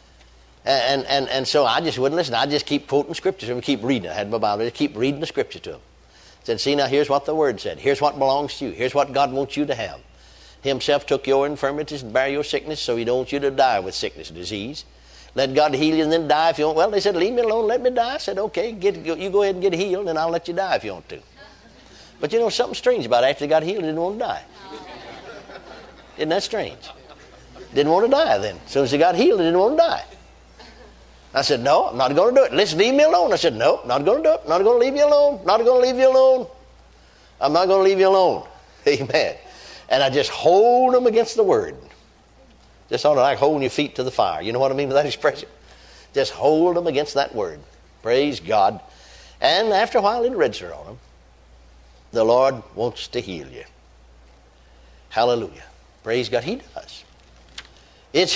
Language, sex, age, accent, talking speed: English, male, 60-79, American, 240 wpm